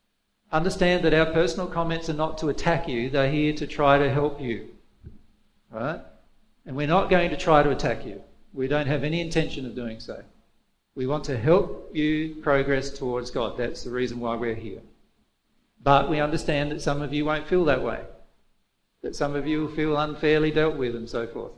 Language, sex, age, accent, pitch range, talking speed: English, male, 50-69, Australian, 140-175 Hz, 200 wpm